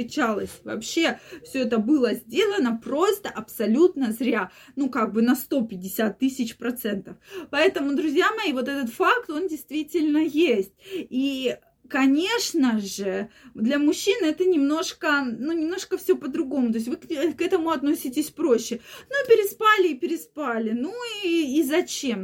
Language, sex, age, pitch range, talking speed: Russian, female, 20-39, 240-335 Hz, 135 wpm